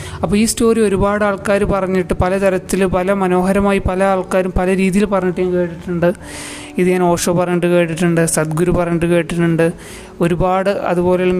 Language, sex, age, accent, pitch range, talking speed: Malayalam, male, 30-49, native, 175-190 Hz, 135 wpm